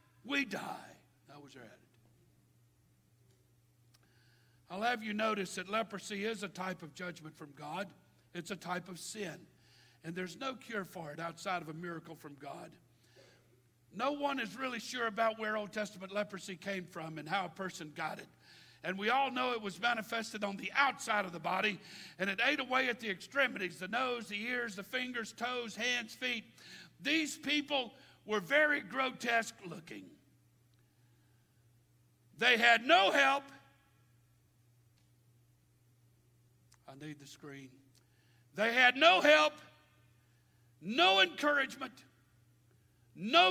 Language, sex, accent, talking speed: English, male, American, 140 wpm